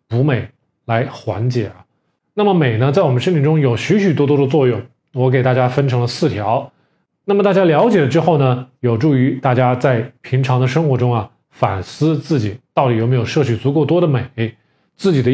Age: 20-39